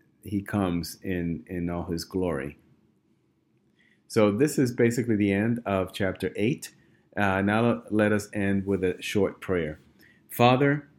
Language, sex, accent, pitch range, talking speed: English, male, American, 95-115 Hz, 135 wpm